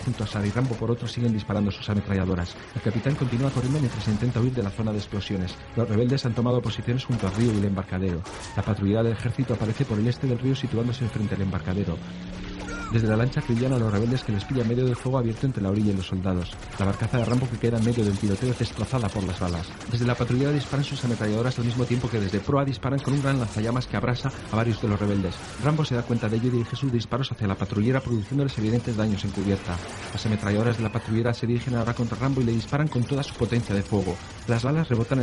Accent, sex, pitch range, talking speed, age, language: Spanish, male, 105-125 Hz, 250 wpm, 40-59, Spanish